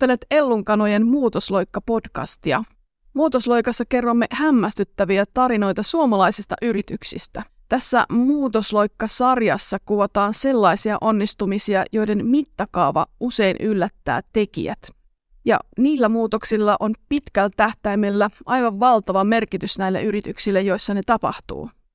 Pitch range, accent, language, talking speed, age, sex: 205-235 Hz, native, Finnish, 90 wpm, 30-49, female